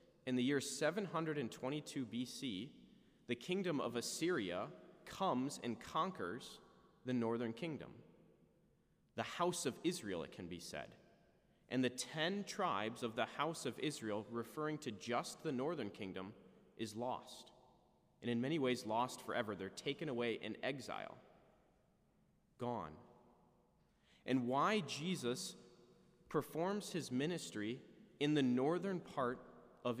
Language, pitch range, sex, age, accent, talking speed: English, 120-170 Hz, male, 30-49, American, 125 wpm